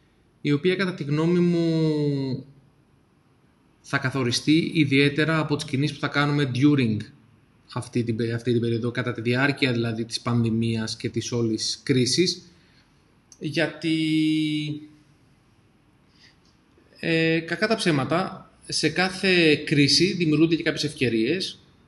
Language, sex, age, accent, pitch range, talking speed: Greek, male, 30-49, native, 125-155 Hz, 110 wpm